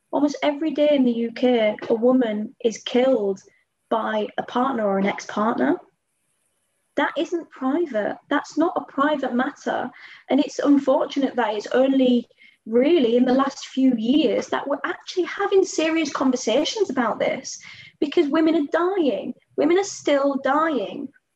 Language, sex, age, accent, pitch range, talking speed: English, female, 20-39, British, 235-305 Hz, 145 wpm